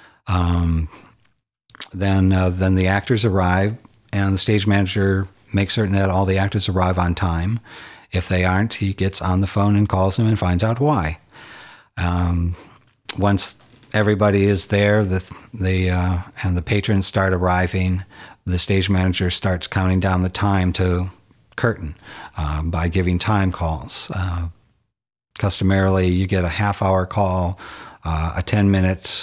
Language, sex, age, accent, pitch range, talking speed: English, male, 50-69, American, 90-100 Hz, 150 wpm